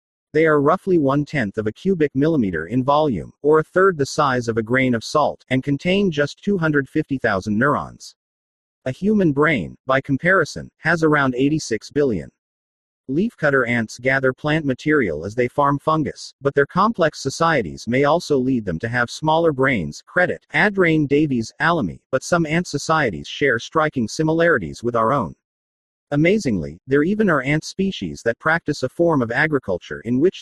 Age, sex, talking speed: 40-59, male, 165 wpm